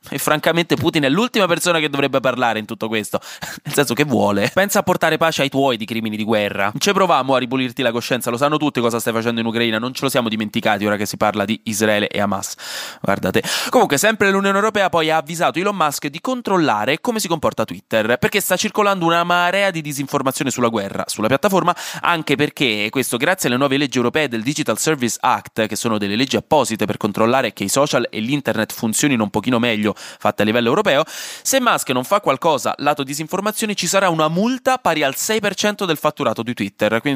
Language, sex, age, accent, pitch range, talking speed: Italian, male, 20-39, native, 120-175 Hz, 215 wpm